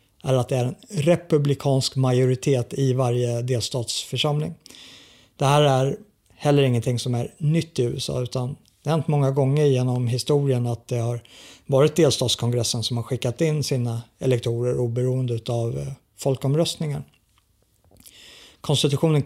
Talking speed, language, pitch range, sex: 130 wpm, Swedish, 125-150 Hz, male